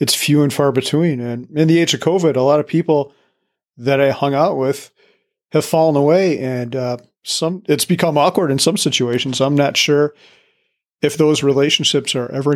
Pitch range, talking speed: 125-150 Hz, 190 wpm